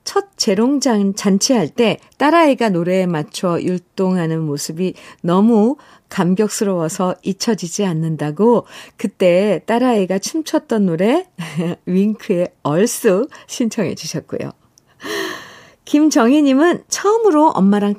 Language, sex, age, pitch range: Korean, female, 50-69, 170-235 Hz